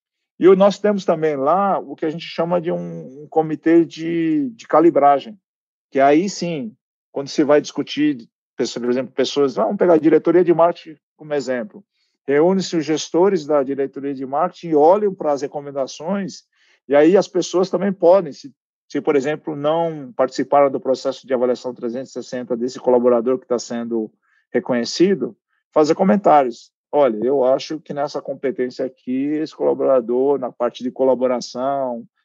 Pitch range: 135-180 Hz